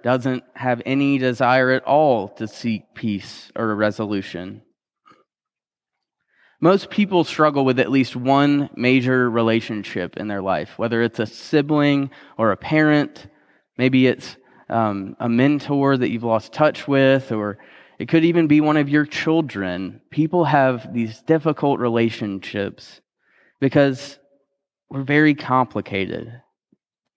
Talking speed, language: 130 wpm, English